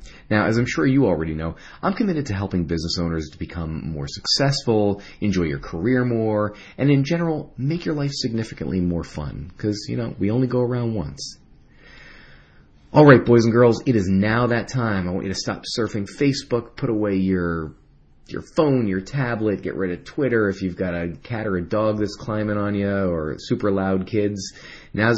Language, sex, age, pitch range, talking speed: English, male, 30-49, 85-115 Hz, 200 wpm